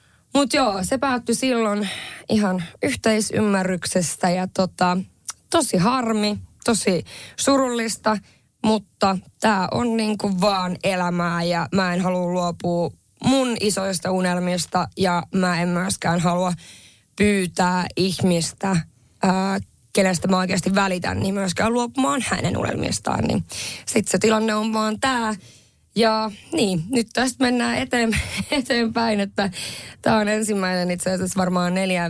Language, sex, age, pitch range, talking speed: Finnish, female, 20-39, 175-215 Hz, 125 wpm